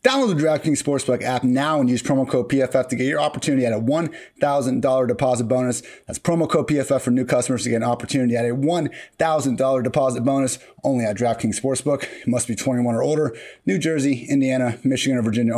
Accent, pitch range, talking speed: American, 125-145 Hz, 200 wpm